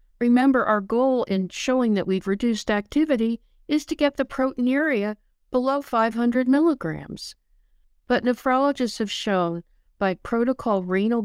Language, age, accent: English, 60-79, American